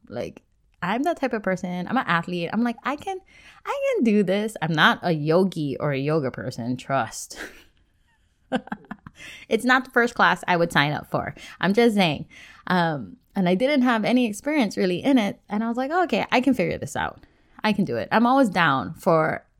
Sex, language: female, English